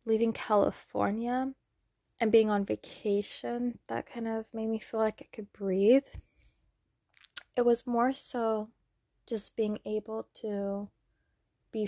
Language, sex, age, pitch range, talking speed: English, female, 10-29, 205-235 Hz, 125 wpm